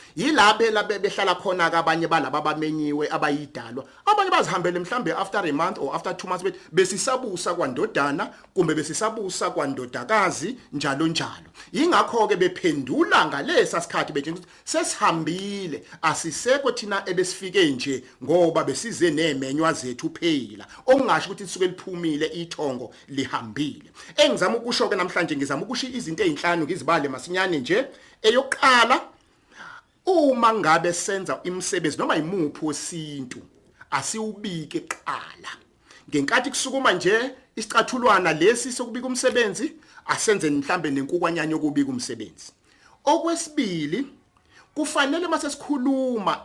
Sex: male